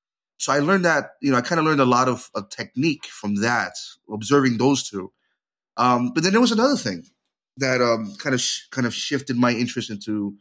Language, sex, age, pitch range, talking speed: English, male, 30-49, 105-135 Hz, 220 wpm